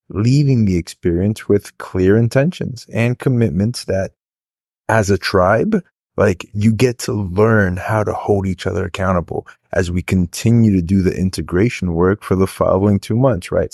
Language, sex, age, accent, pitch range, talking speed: English, male, 30-49, American, 95-115 Hz, 160 wpm